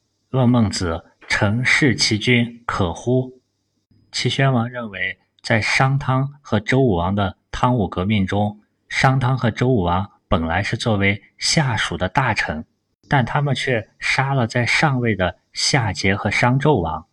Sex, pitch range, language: male, 100-135 Hz, Chinese